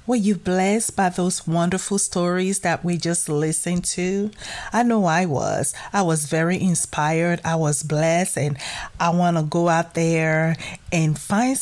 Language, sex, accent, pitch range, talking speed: English, female, American, 155-190 Hz, 165 wpm